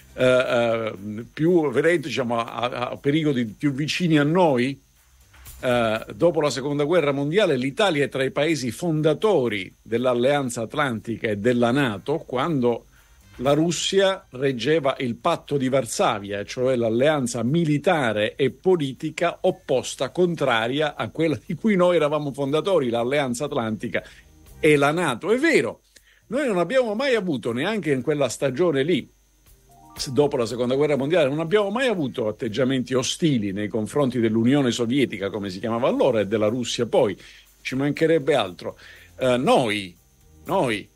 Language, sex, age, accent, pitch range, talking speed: Italian, male, 50-69, native, 120-155 Hz, 140 wpm